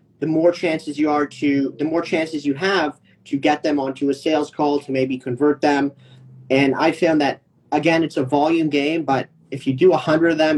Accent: American